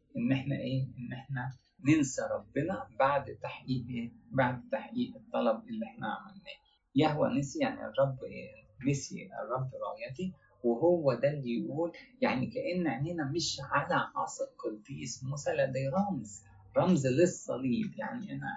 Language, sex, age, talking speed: English, male, 30-49, 135 wpm